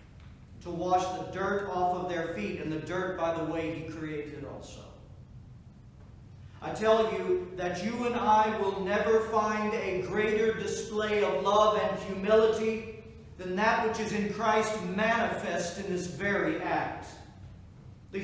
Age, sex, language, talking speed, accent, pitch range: 40-59, male, English, 150 wpm, American, 145-215 Hz